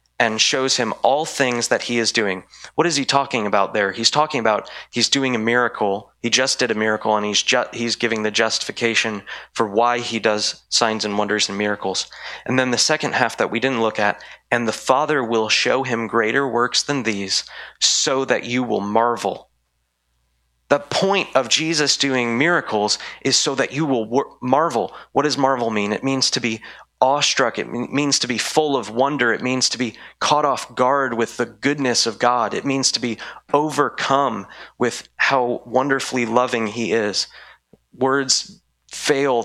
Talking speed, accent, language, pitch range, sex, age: 185 wpm, American, English, 105-130 Hz, male, 30-49